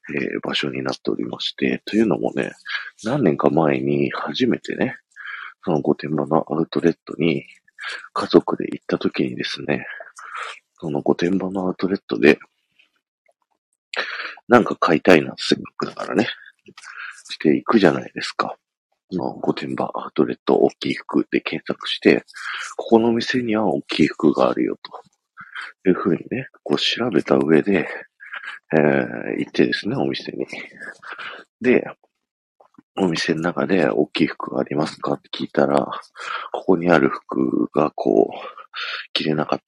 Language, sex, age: Japanese, male, 40-59